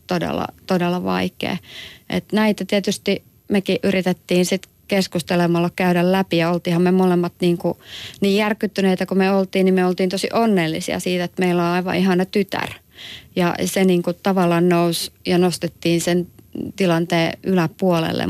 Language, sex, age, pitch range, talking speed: Finnish, female, 30-49, 170-185 Hz, 145 wpm